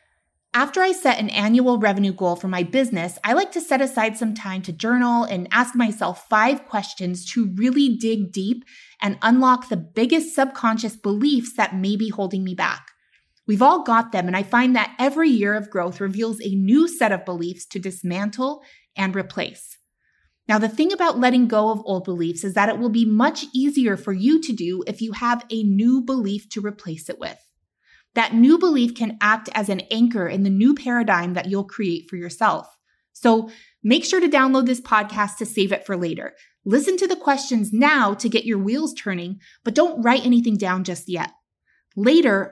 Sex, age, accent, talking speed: female, 20-39, American, 195 wpm